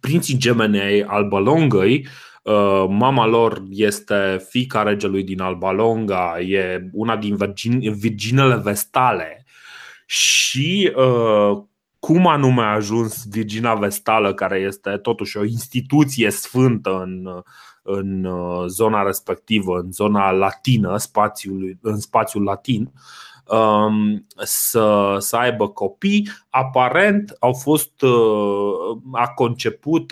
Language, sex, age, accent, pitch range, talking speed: Romanian, male, 20-39, native, 100-125 Hz, 95 wpm